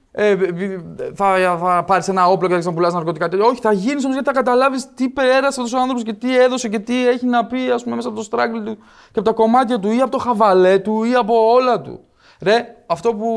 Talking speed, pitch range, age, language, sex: 250 wpm, 175-225 Hz, 20-39, Greek, male